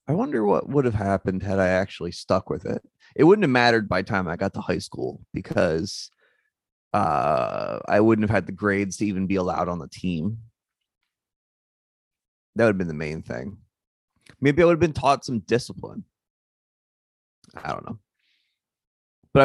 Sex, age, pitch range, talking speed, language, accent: male, 30-49, 95-120 Hz, 180 wpm, English, American